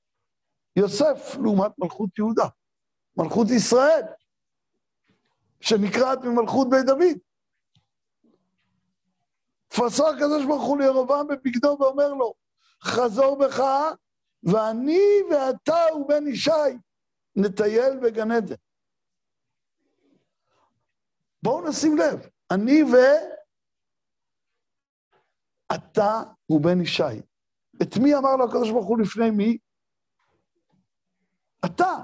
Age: 60-79